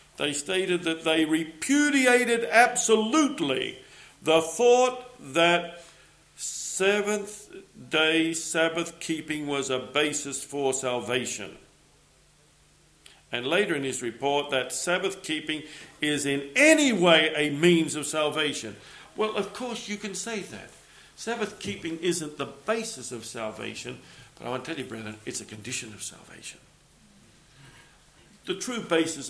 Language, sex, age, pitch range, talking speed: English, male, 50-69, 140-195 Hz, 120 wpm